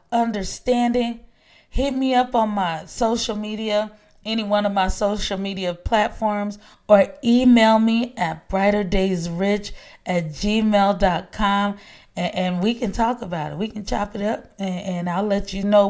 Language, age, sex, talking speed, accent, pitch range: English, 30-49, female, 150 wpm, American, 190-245 Hz